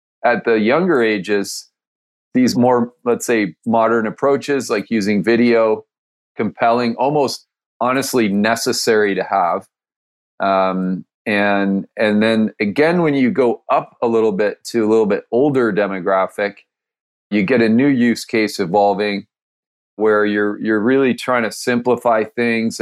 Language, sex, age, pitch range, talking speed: English, male, 40-59, 100-115 Hz, 135 wpm